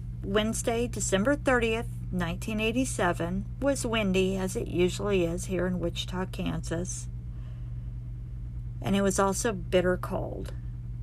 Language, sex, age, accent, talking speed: English, female, 50-69, American, 110 wpm